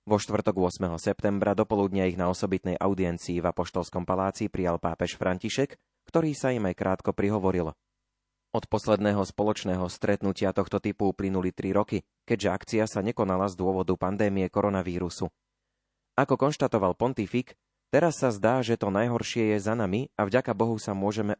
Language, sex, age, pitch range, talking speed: Slovak, male, 30-49, 95-110 Hz, 155 wpm